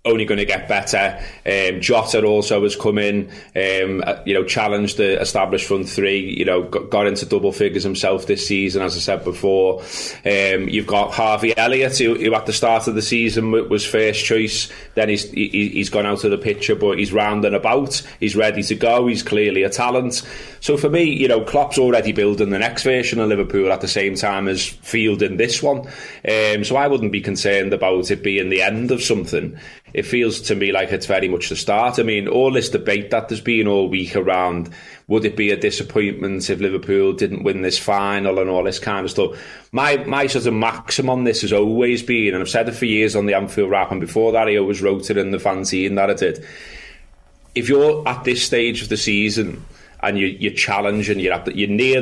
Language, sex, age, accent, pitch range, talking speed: English, male, 20-39, British, 100-115 Hz, 220 wpm